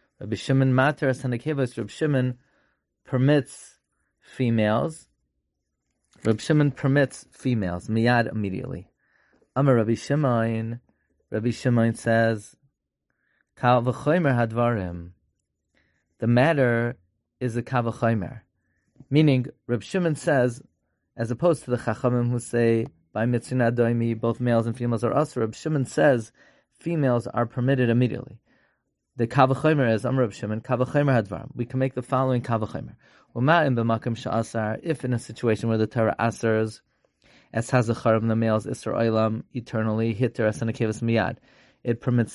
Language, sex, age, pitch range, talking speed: English, male, 30-49, 110-130 Hz, 125 wpm